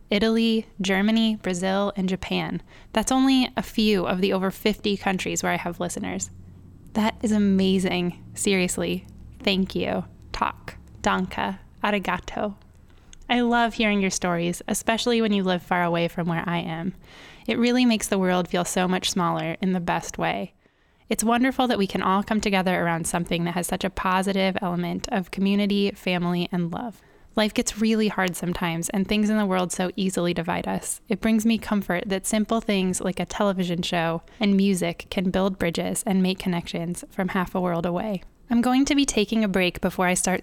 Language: English